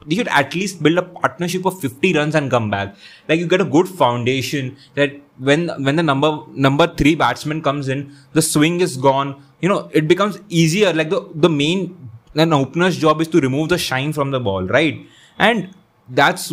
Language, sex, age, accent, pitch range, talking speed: English, male, 20-39, Indian, 130-170 Hz, 205 wpm